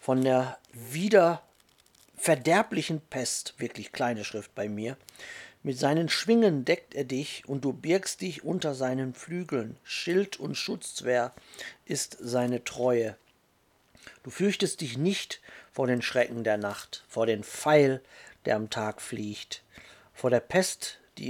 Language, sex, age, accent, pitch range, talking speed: German, male, 50-69, German, 120-160 Hz, 135 wpm